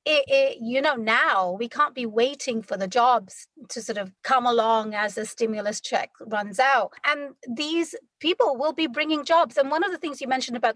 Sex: female